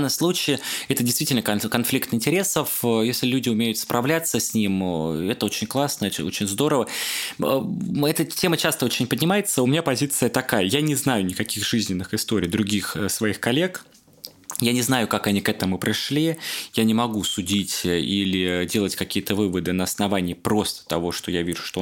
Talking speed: 160 wpm